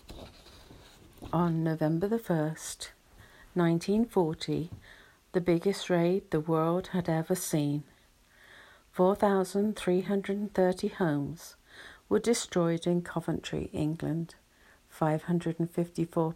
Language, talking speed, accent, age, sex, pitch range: English, 75 wpm, British, 50-69, female, 155-200 Hz